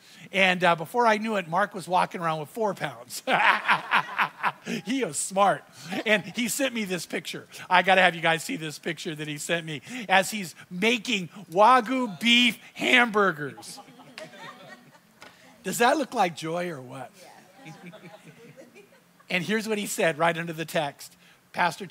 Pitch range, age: 165-210 Hz, 50-69